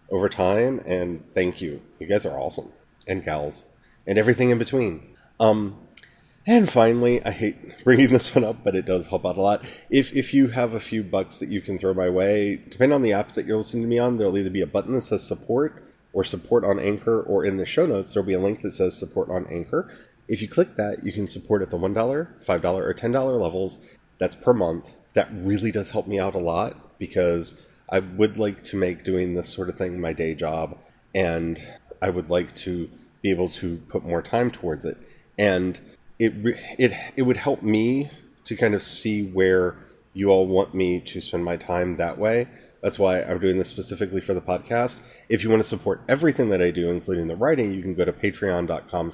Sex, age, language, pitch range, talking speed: male, 30-49, English, 90-115 Hz, 220 wpm